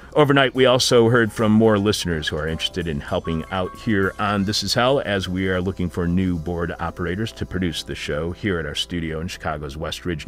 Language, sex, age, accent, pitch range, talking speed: English, male, 40-59, American, 85-115 Hz, 220 wpm